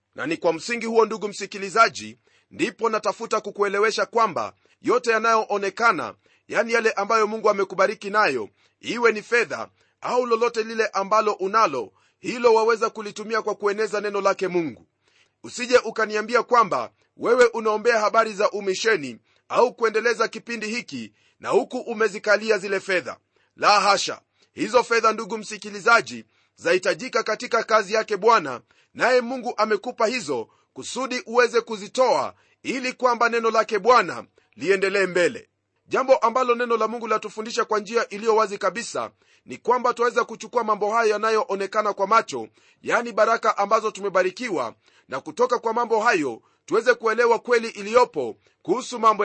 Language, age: Swahili, 30-49